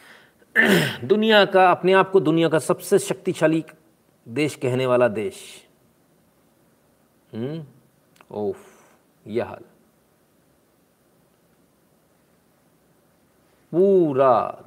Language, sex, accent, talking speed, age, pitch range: Hindi, male, native, 70 wpm, 50-69, 115-180 Hz